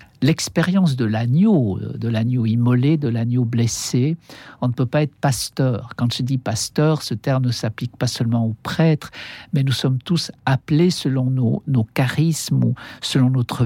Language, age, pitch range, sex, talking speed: French, 60-79, 120-160 Hz, male, 170 wpm